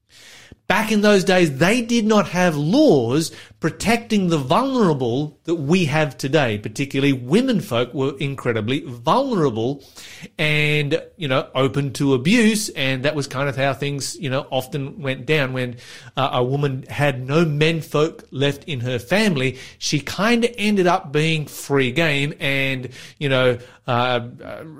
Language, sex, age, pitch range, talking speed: English, male, 30-49, 130-180 Hz, 155 wpm